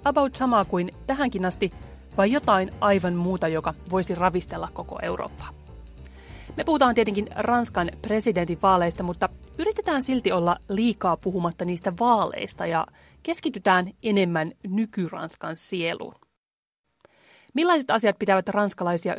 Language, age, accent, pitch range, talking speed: Finnish, 30-49, native, 175-230 Hz, 115 wpm